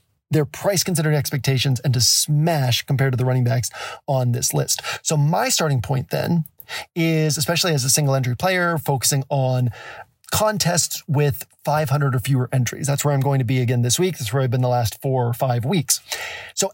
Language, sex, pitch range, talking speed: English, male, 125-155 Hz, 190 wpm